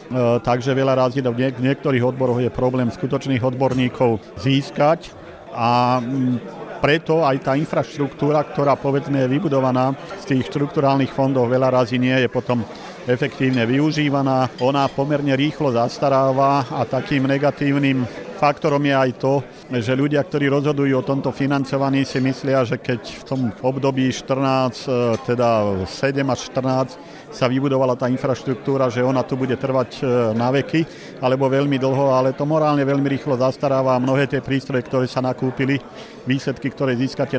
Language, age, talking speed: Slovak, 50-69, 145 wpm